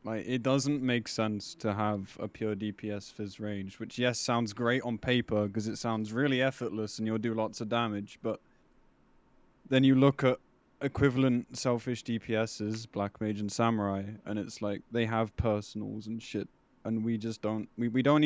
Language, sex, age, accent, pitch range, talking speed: English, male, 20-39, British, 105-125 Hz, 185 wpm